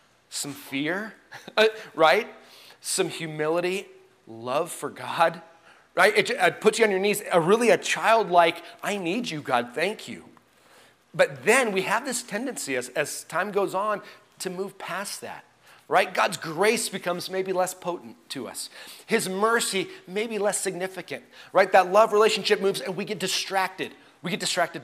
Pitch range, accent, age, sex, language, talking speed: 180-220 Hz, American, 30-49, male, English, 160 wpm